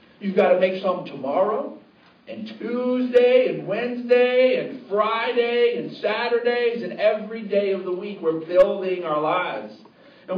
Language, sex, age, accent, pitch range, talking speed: English, male, 50-69, American, 165-225 Hz, 145 wpm